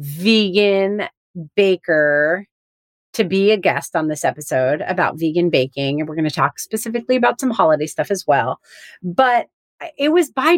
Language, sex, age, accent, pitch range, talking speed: English, female, 30-49, American, 165-235 Hz, 160 wpm